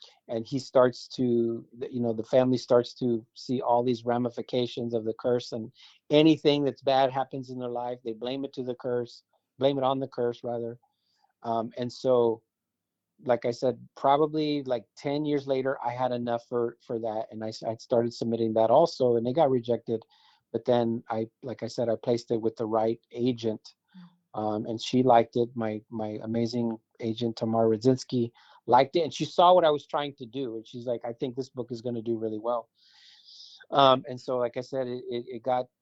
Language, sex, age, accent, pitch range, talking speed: English, male, 40-59, American, 115-135 Hz, 205 wpm